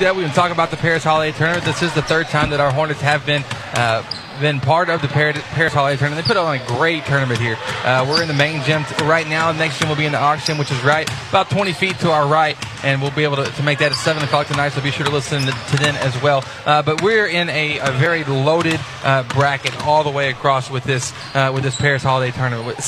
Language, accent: English, American